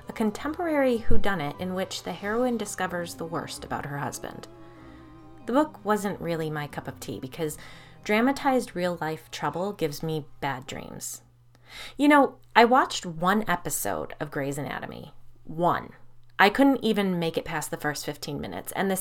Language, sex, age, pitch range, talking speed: English, female, 30-49, 145-200 Hz, 160 wpm